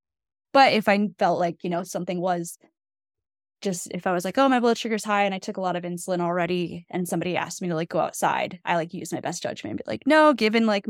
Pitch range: 170-215 Hz